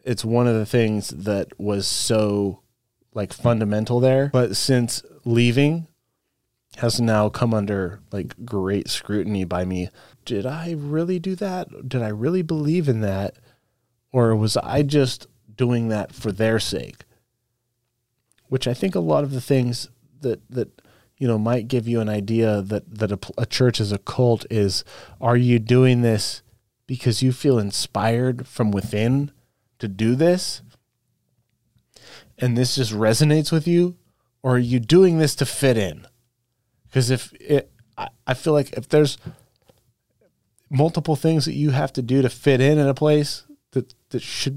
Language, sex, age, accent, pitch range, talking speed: English, male, 30-49, American, 115-135 Hz, 165 wpm